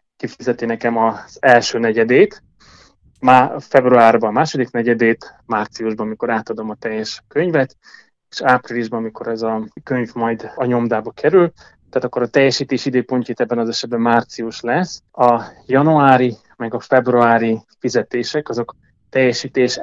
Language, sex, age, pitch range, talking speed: Hungarian, male, 20-39, 115-130 Hz, 130 wpm